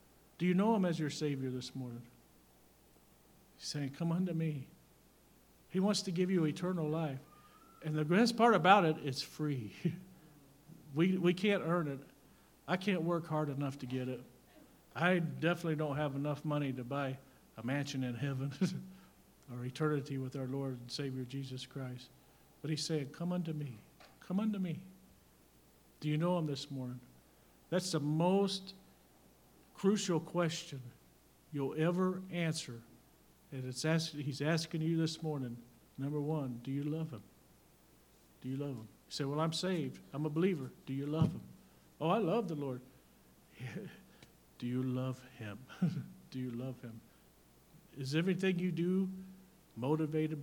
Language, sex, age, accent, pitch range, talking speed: English, male, 50-69, American, 130-170 Hz, 160 wpm